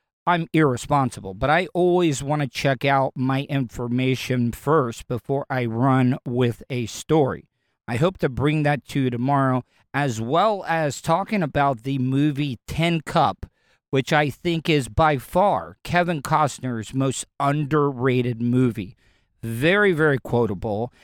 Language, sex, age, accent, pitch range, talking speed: English, male, 40-59, American, 125-165 Hz, 140 wpm